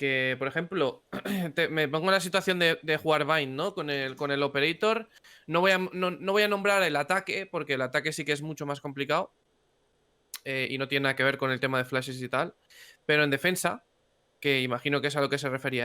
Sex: male